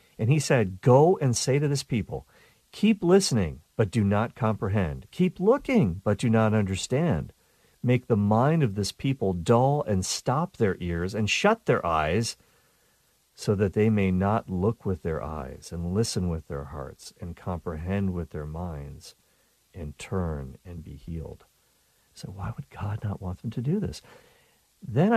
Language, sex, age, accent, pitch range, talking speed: English, male, 50-69, American, 90-130 Hz, 170 wpm